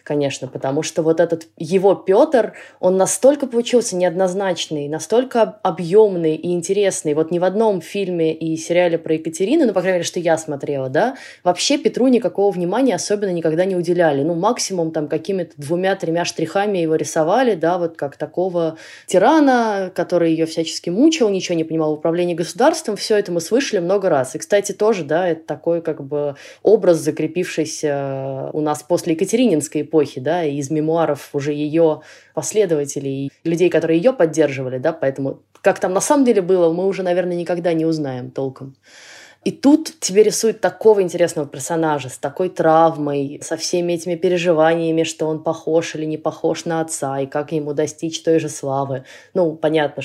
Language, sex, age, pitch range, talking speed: Russian, female, 20-39, 155-190 Hz, 170 wpm